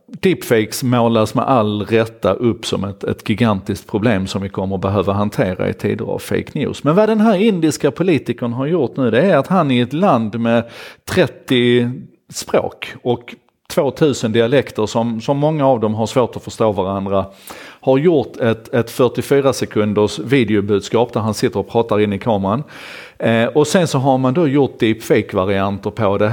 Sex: male